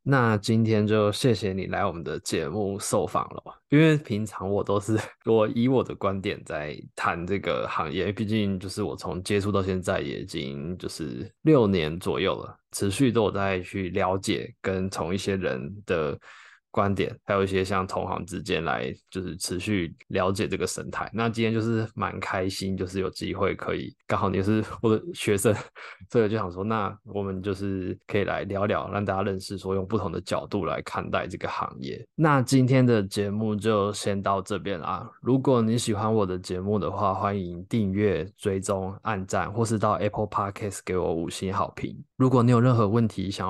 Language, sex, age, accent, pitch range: Chinese, male, 20-39, native, 95-110 Hz